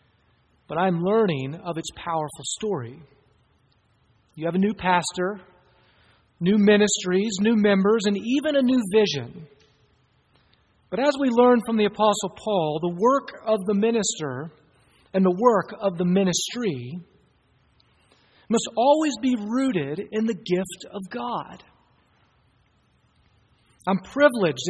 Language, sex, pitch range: English, male, 165-230 Hz